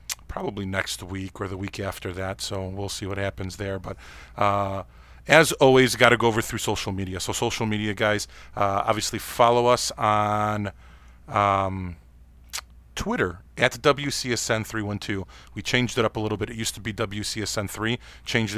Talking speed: 170 wpm